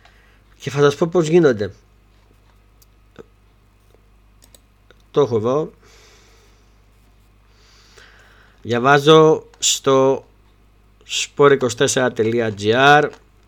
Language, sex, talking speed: Greek, male, 55 wpm